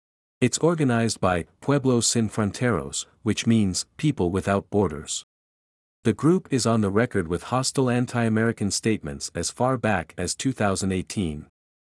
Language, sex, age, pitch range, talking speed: English, male, 50-69, 90-125 Hz, 130 wpm